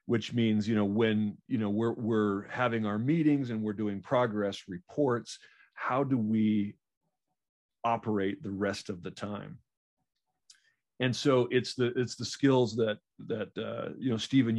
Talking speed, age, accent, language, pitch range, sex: 160 wpm, 40-59, American, English, 105-125 Hz, male